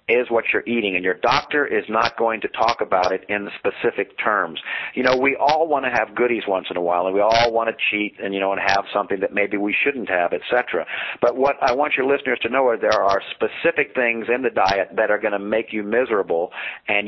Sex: male